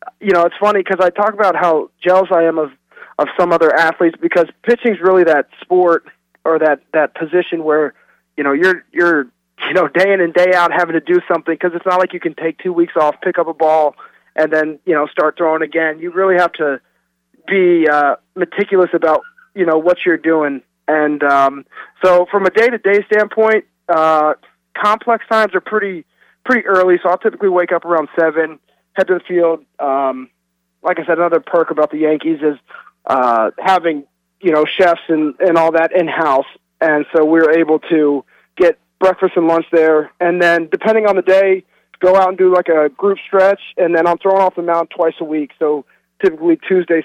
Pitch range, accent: 155-190 Hz, American